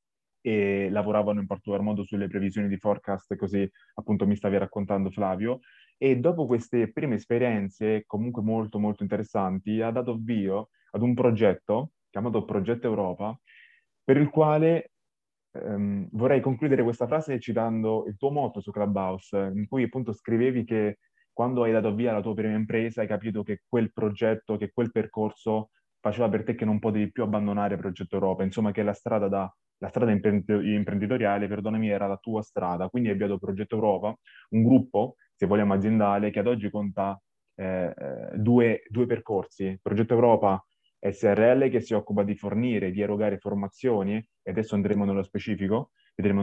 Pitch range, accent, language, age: 100-115 Hz, native, Italian, 20-39